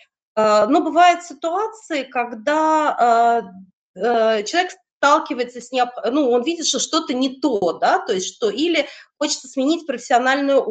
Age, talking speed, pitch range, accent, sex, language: 30-49, 130 wpm, 210-305 Hz, native, female, Russian